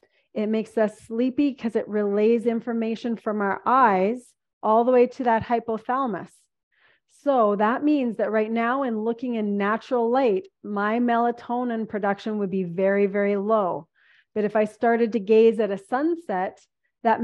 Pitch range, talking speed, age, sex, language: 220-285 Hz, 160 wpm, 30-49, female, English